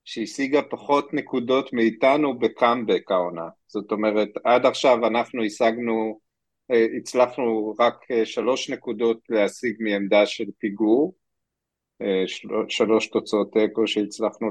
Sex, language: male, Hebrew